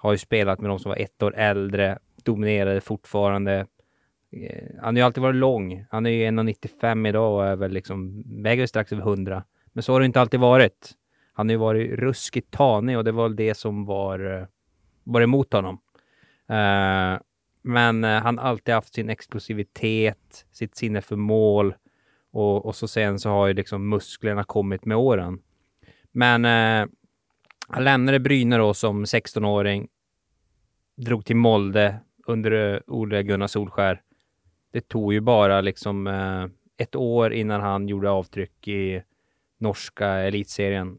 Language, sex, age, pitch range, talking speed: English, male, 20-39, 100-115 Hz, 155 wpm